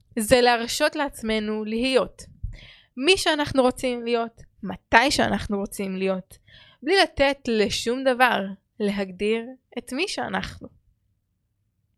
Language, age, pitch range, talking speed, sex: Hebrew, 10-29, 210-270 Hz, 100 wpm, female